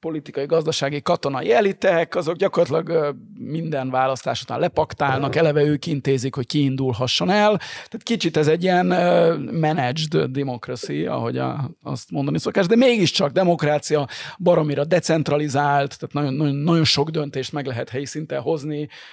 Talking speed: 130 wpm